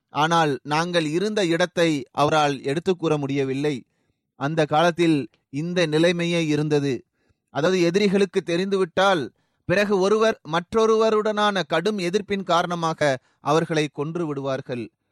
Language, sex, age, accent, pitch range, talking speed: Tamil, male, 30-49, native, 160-210 Hz, 95 wpm